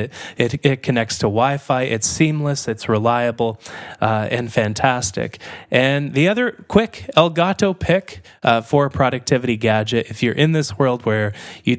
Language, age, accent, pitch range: English, 20-39, American, 110-145 Hz